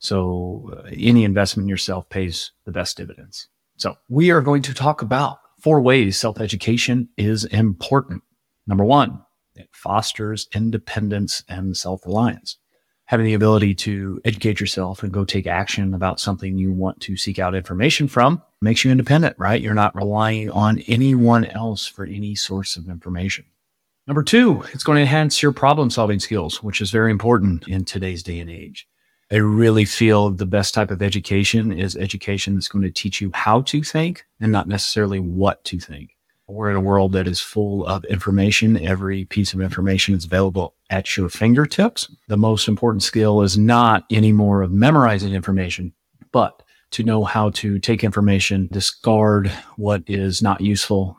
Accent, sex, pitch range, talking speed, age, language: American, male, 95-115 Hz, 170 wpm, 30-49, English